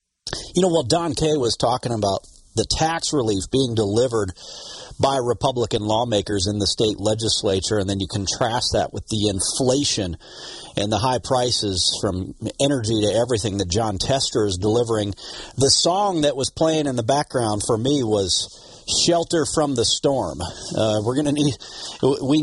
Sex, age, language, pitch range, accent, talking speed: male, 40-59, English, 105-145 Hz, American, 165 wpm